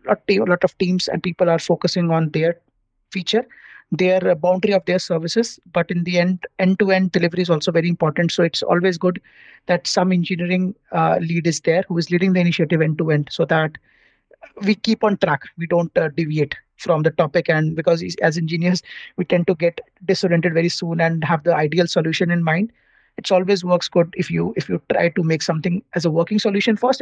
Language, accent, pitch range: English, Indian, 165-185 Hz